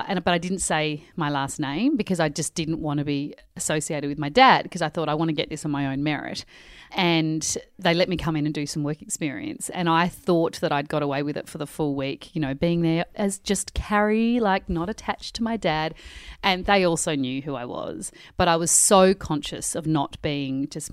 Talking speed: 240 wpm